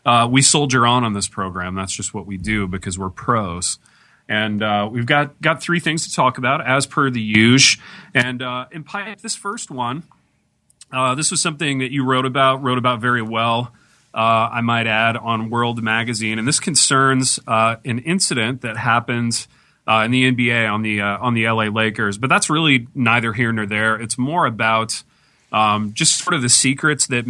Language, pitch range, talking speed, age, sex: English, 110-130 Hz, 200 wpm, 30-49, male